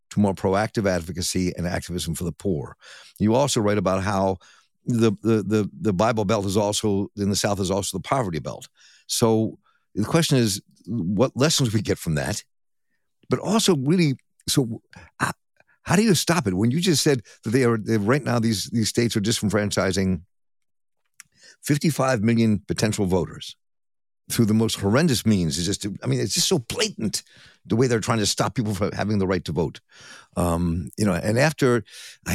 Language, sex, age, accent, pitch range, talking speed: English, male, 60-79, American, 100-125 Hz, 185 wpm